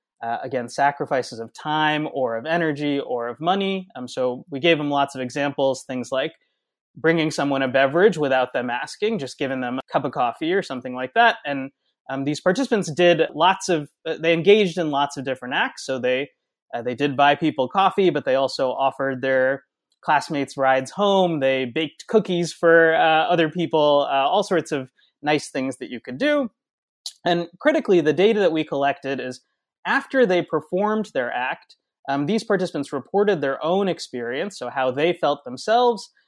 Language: English